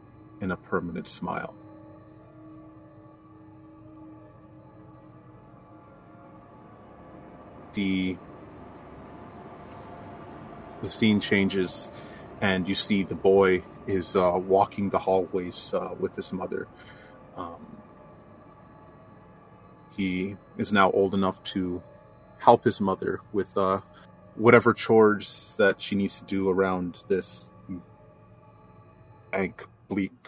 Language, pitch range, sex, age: English, 95-105 Hz, male, 30-49